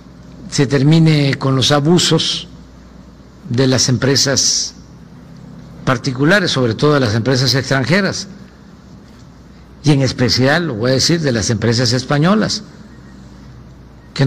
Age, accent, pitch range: 50-69, Mexican, 115-150 Hz